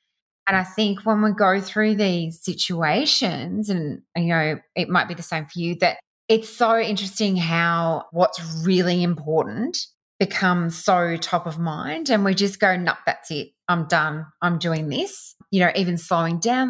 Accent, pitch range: Australian, 165-220 Hz